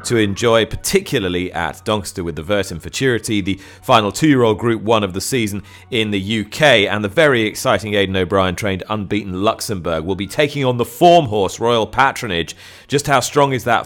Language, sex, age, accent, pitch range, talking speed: English, male, 30-49, British, 100-125 Hz, 185 wpm